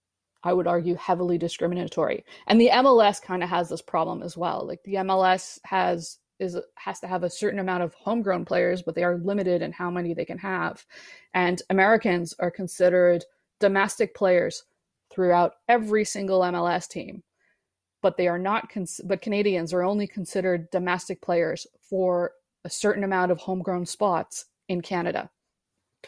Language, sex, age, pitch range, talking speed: English, female, 20-39, 175-205 Hz, 160 wpm